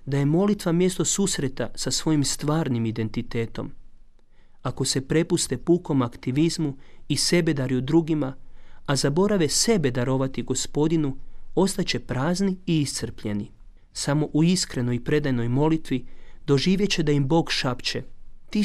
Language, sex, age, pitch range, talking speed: Croatian, male, 40-59, 120-160 Hz, 130 wpm